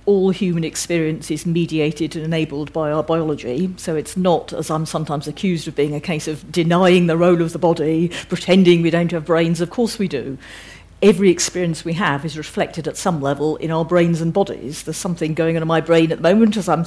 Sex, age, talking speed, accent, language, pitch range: female, 50-69, 230 wpm, British, English, 160-185 Hz